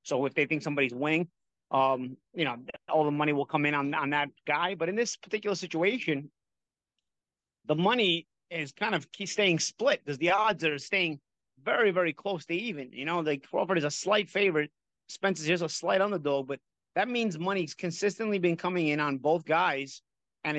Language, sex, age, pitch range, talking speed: English, male, 30-49, 145-185 Hz, 200 wpm